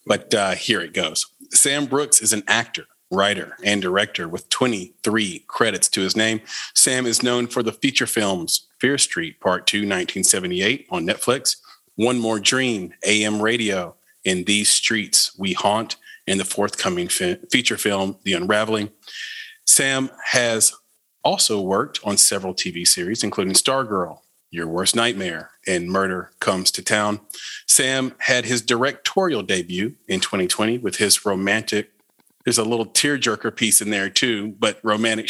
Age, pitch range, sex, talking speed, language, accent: 40-59, 105-130 Hz, male, 150 wpm, English, American